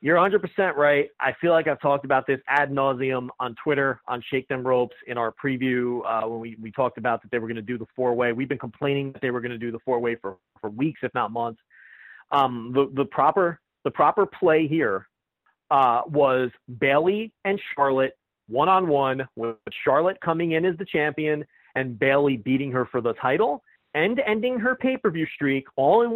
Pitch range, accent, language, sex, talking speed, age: 130-160 Hz, American, English, male, 195 wpm, 30-49